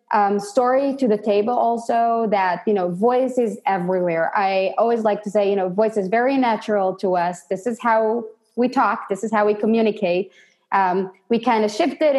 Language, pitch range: English, 195-240 Hz